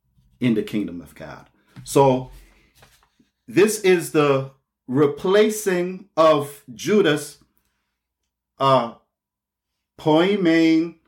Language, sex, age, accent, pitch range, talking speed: English, male, 40-59, American, 130-170 Hz, 75 wpm